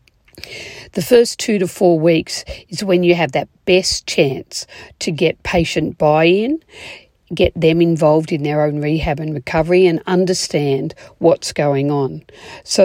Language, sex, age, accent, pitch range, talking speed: English, female, 50-69, Australian, 160-190 Hz, 150 wpm